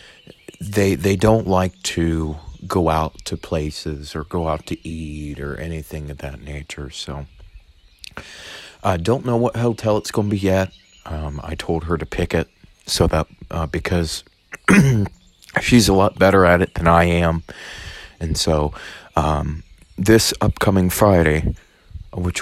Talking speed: 155 wpm